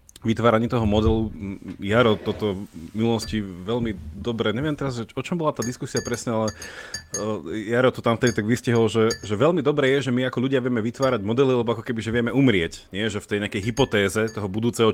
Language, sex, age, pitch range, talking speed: Slovak, male, 30-49, 95-120 Hz, 200 wpm